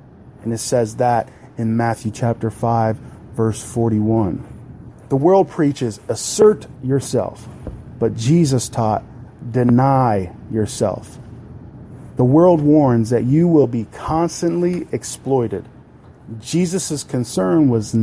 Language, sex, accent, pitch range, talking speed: English, male, American, 115-135 Hz, 105 wpm